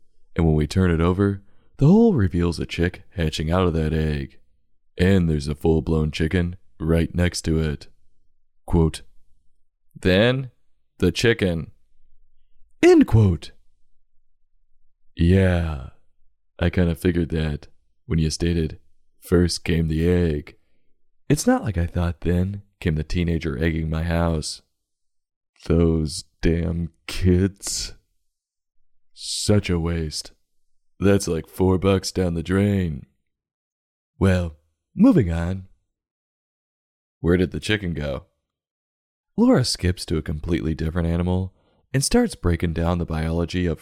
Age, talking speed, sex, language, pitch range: 20-39, 125 wpm, male, English, 80-95 Hz